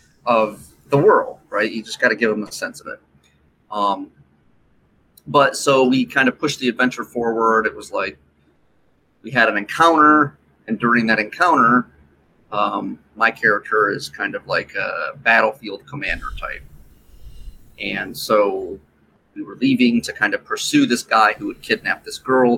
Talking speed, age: 165 wpm, 30-49